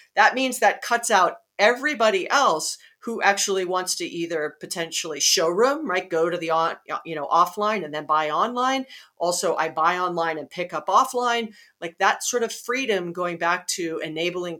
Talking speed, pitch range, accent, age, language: 175 wpm, 165-220 Hz, American, 40-59, English